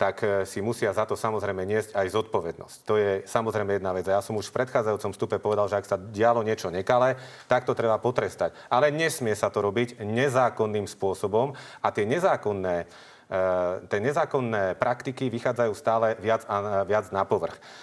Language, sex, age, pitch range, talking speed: Slovak, male, 40-59, 105-130 Hz, 175 wpm